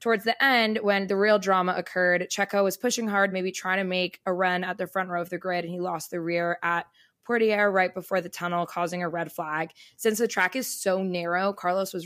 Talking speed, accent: 240 wpm, American